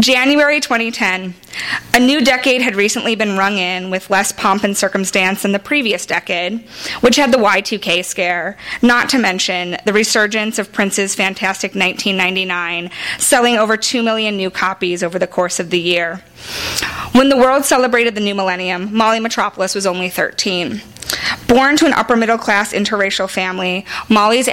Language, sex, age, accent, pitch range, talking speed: English, female, 20-39, American, 185-240 Hz, 155 wpm